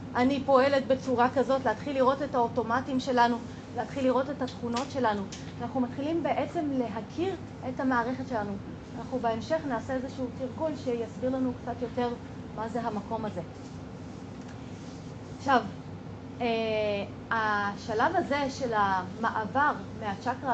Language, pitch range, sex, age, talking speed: Hebrew, 230-275 Hz, female, 30-49, 115 wpm